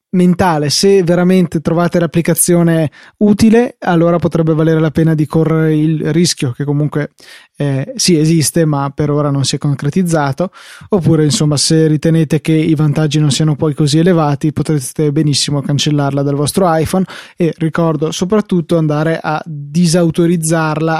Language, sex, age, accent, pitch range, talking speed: Italian, male, 20-39, native, 150-175 Hz, 150 wpm